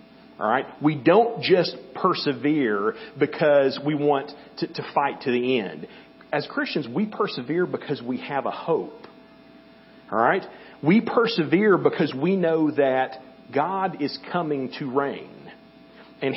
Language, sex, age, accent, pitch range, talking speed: English, male, 40-59, American, 135-170 Hz, 140 wpm